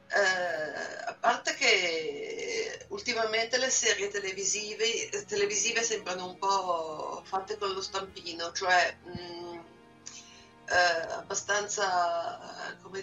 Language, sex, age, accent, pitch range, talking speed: Italian, female, 30-49, native, 180-245 Hz, 100 wpm